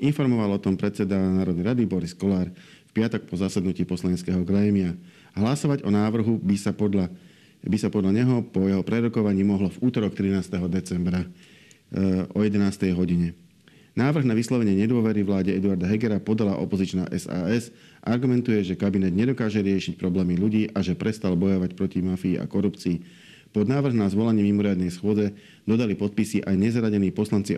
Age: 50-69